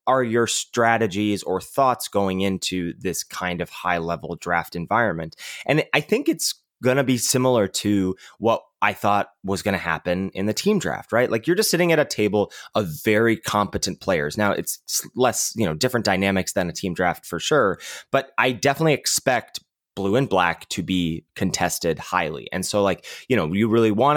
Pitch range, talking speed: 90-115 Hz, 195 wpm